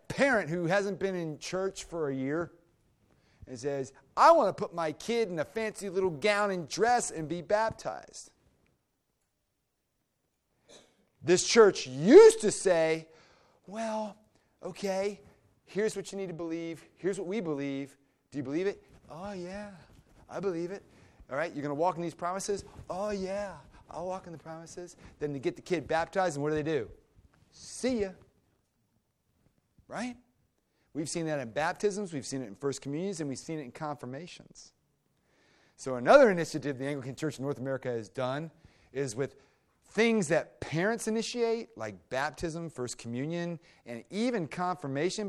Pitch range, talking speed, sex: 140-195 Hz, 165 wpm, male